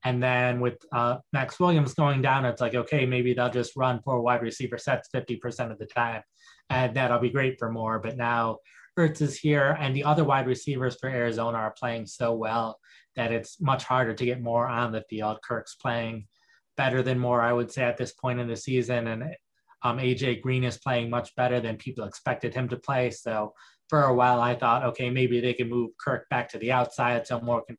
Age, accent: 20-39, American